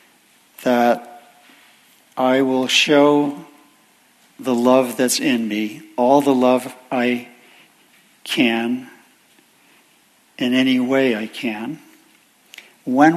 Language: English